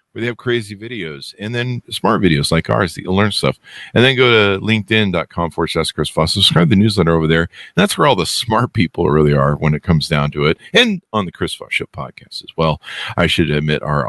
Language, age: English, 50-69